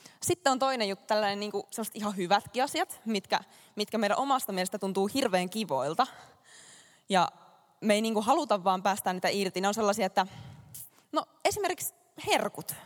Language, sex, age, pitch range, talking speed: Finnish, female, 20-39, 175-220 Hz, 155 wpm